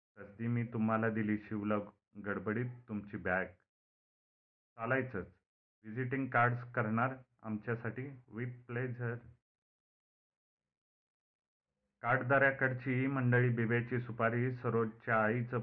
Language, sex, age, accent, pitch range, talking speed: Marathi, male, 40-59, native, 105-120 Hz, 90 wpm